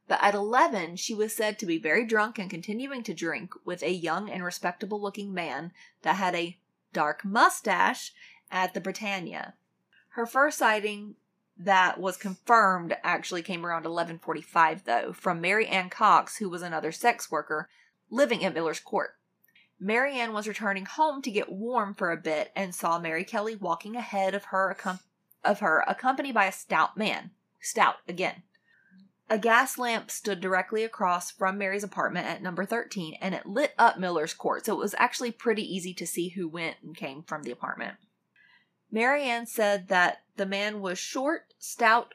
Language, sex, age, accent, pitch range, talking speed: English, female, 30-49, American, 180-225 Hz, 170 wpm